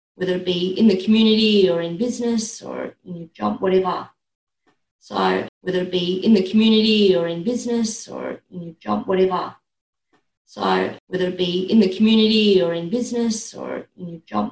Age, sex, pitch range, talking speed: 30-49, female, 170-220 Hz, 180 wpm